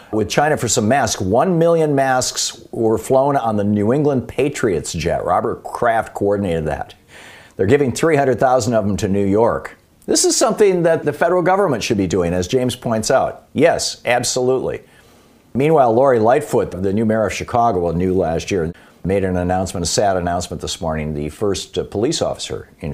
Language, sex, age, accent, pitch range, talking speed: English, male, 50-69, American, 90-125 Hz, 180 wpm